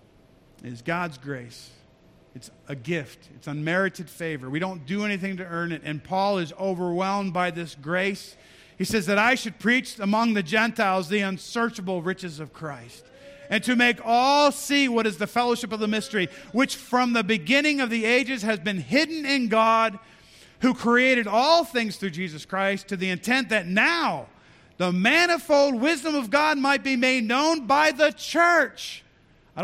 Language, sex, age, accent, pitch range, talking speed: English, male, 50-69, American, 180-270 Hz, 175 wpm